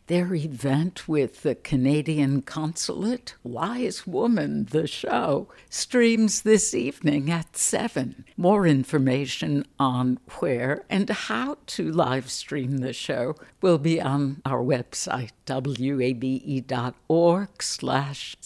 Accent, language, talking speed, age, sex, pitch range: American, English, 105 wpm, 60-79, female, 130-175 Hz